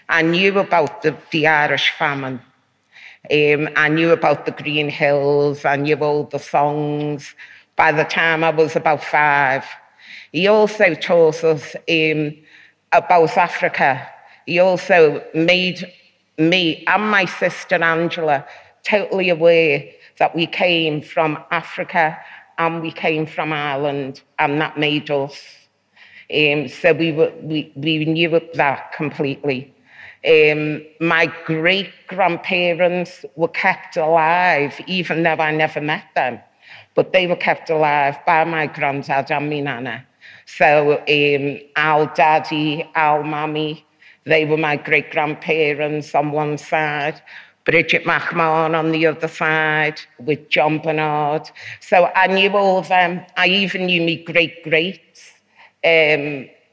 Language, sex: English, female